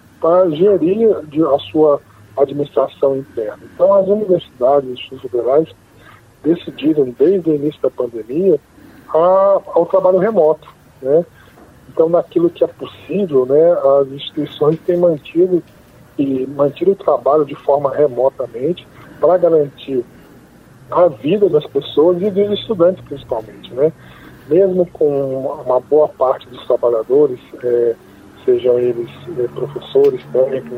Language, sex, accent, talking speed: Portuguese, male, Brazilian, 125 wpm